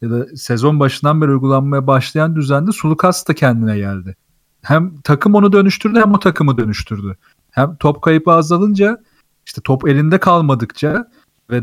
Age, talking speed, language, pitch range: 40-59, 150 wpm, Turkish, 130-175 Hz